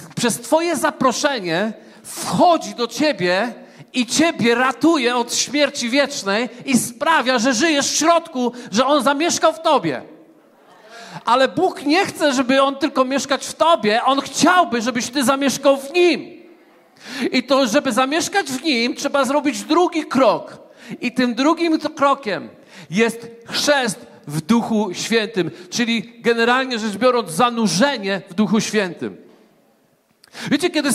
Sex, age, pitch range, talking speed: male, 40-59, 230-300 Hz, 135 wpm